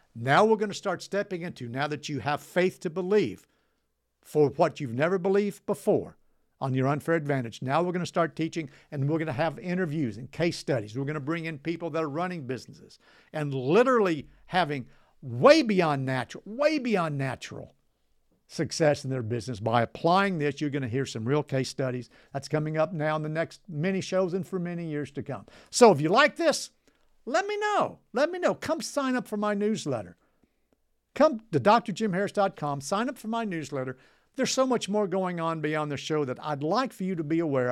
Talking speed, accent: 205 wpm, American